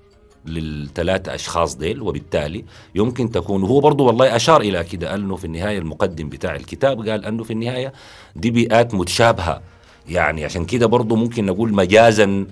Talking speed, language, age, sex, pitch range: 155 wpm, Arabic, 40-59, male, 80-110 Hz